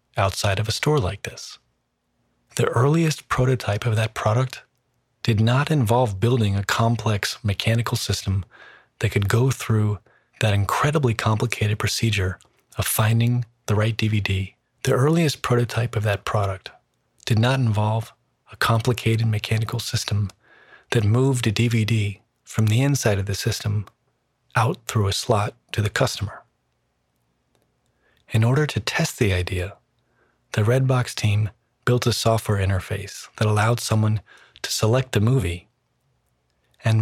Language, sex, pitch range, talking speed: English, male, 105-125 Hz, 135 wpm